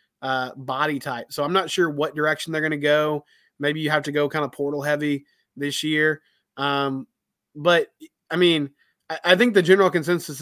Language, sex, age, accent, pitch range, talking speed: English, male, 20-39, American, 145-170 Hz, 195 wpm